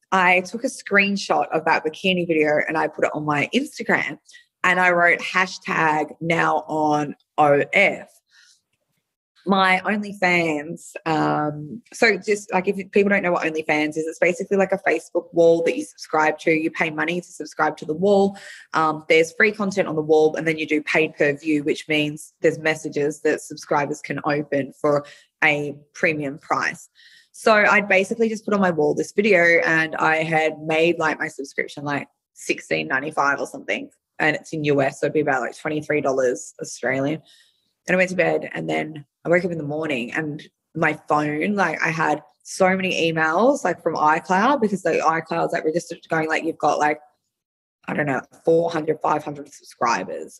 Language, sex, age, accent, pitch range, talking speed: English, female, 20-39, Australian, 150-185 Hz, 185 wpm